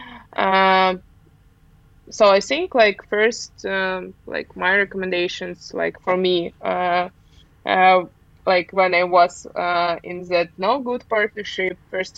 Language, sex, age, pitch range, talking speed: English, female, 20-39, 175-195 Hz, 130 wpm